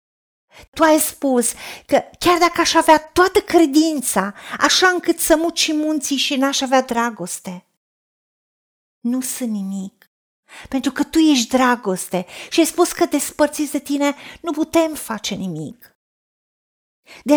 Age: 40-59